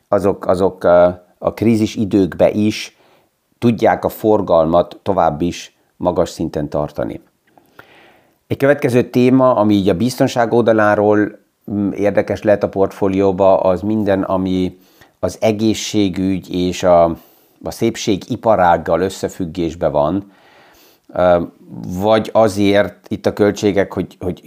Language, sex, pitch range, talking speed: Hungarian, male, 90-110 Hz, 110 wpm